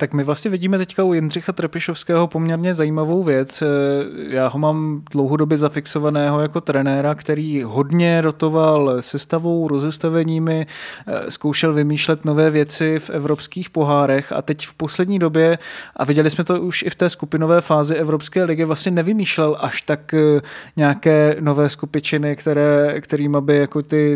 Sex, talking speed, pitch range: male, 145 wpm, 150-165 Hz